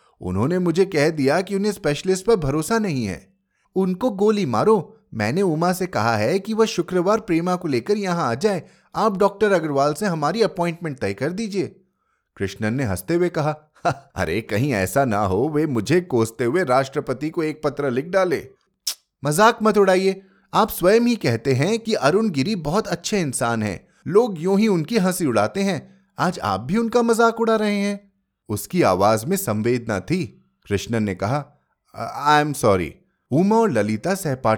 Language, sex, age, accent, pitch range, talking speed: Hindi, male, 30-49, native, 115-195 Hz, 160 wpm